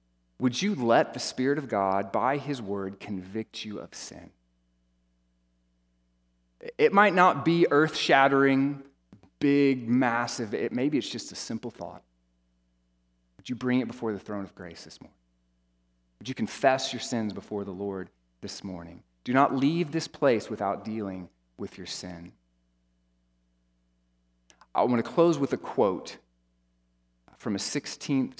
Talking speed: 145 wpm